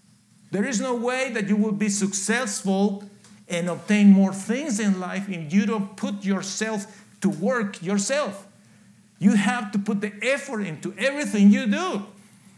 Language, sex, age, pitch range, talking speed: English, male, 50-69, 190-210 Hz, 155 wpm